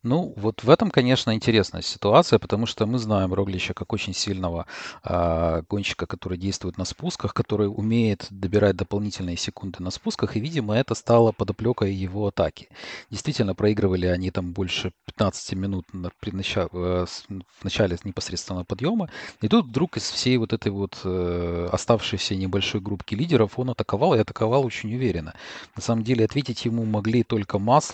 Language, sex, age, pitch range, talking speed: Russian, male, 40-59, 95-120 Hz, 150 wpm